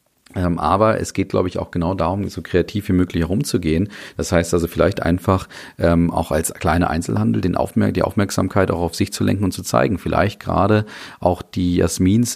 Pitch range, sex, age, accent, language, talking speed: 85-100 Hz, male, 40-59, German, German, 195 wpm